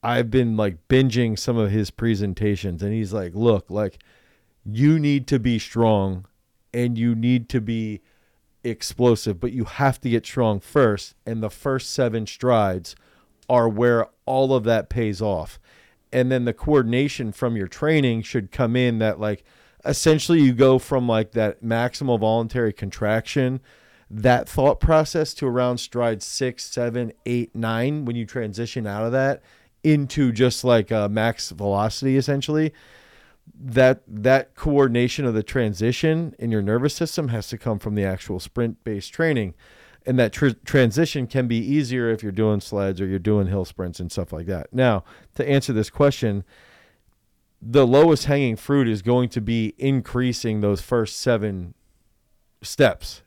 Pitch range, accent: 105-130 Hz, American